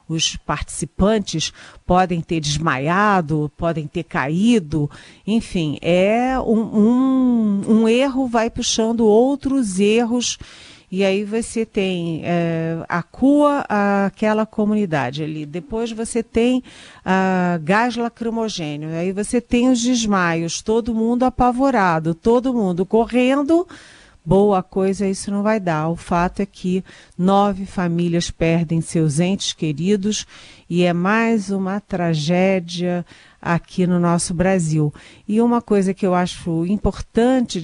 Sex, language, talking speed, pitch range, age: female, Portuguese, 120 wpm, 175-225 Hz, 40-59